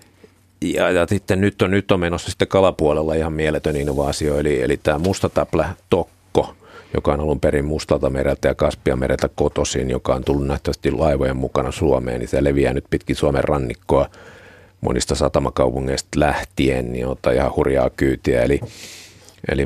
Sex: male